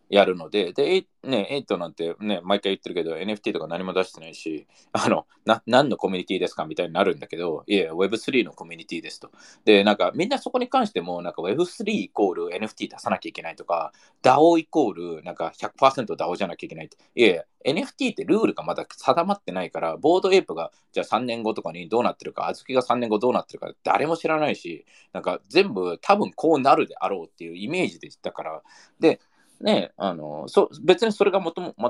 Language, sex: Japanese, male